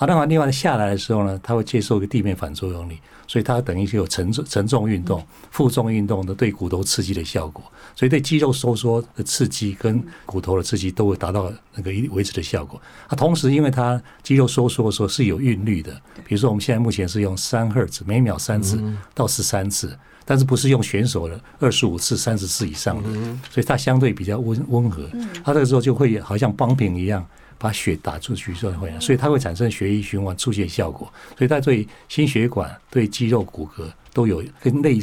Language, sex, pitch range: Chinese, male, 100-130 Hz